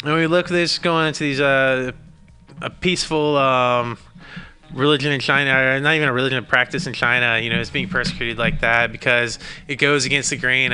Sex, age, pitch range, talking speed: male, 20-39, 115-140 Hz, 205 wpm